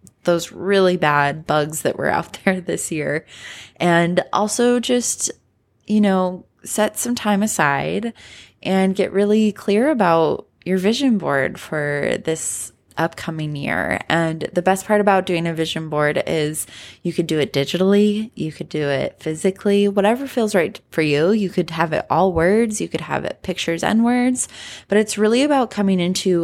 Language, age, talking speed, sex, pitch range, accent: English, 20-39, 170 wpm, female, 160-195 Hz, American